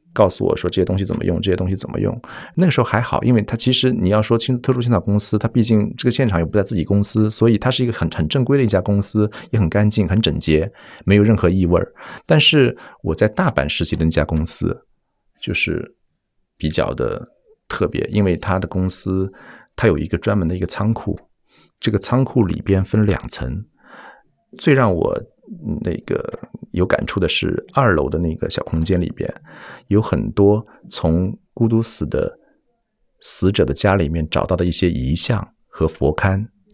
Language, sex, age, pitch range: Chinese, male, 50-69, 85-115 Hz